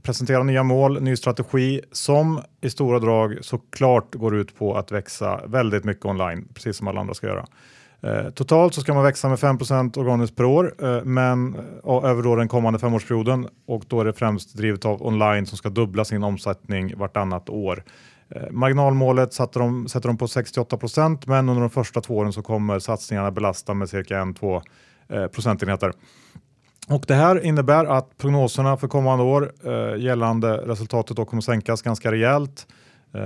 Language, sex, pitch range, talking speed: Swedish, male, 105-130 Hz, 180 wpm